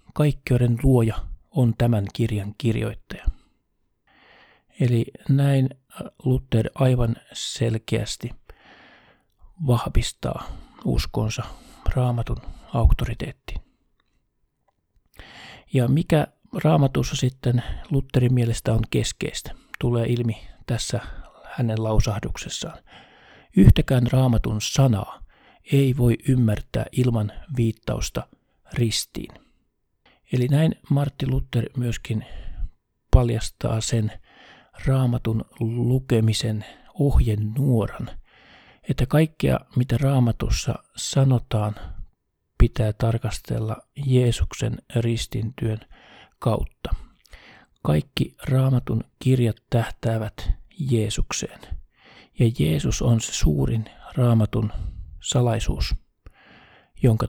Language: Finnish